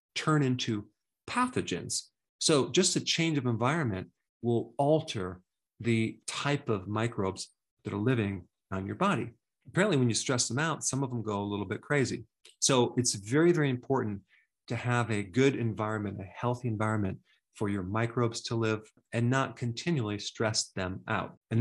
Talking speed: 165 wpm